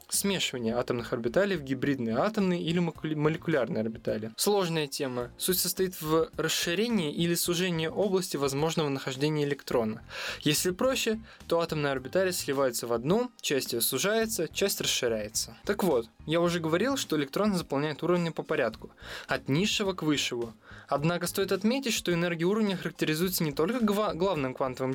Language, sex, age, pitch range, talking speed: Russian, male, 20-39, 135-190 Hz, 145 wpm